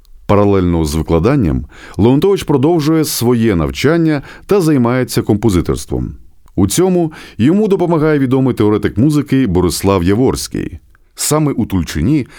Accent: native